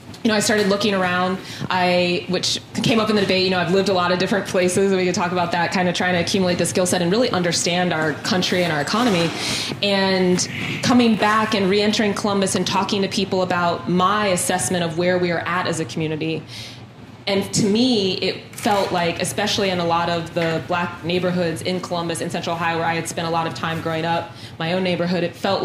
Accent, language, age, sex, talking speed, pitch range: American, English, 20-39, female, 230 wpm, 170-195 Hz